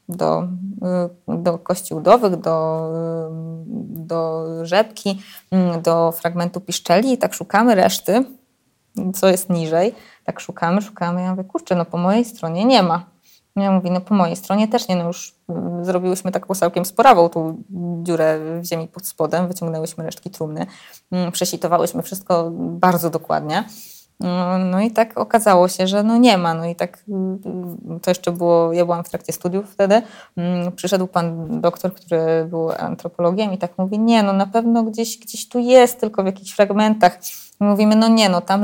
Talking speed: 160 wpm